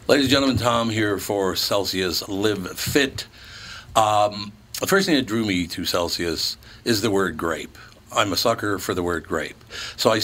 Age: 60-79